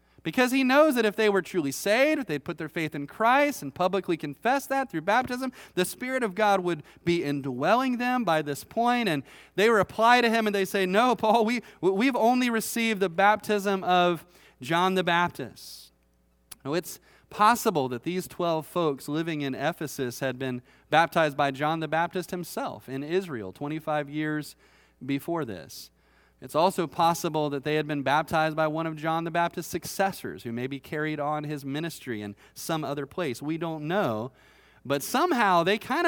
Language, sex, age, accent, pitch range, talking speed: English, male, 30-49, American, 150-245 Hz, 180 wpm